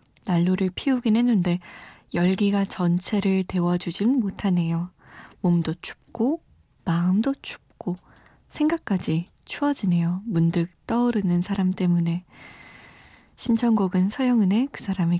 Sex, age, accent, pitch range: female, 20-39, native, 175-220 Hz